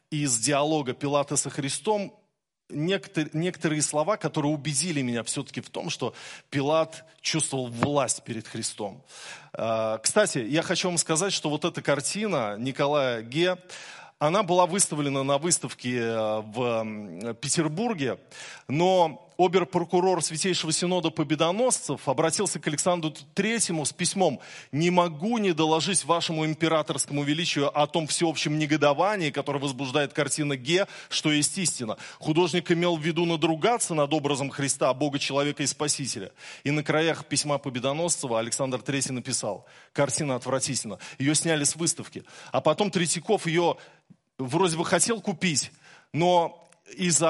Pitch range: 140-170 Hz